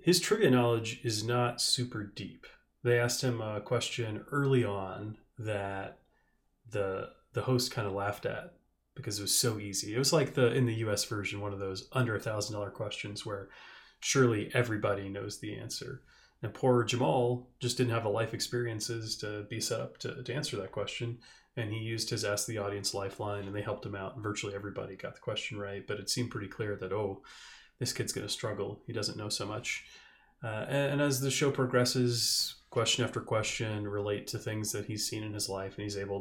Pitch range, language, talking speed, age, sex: 105-120 Hz, English, 205 wpm, 30-49, male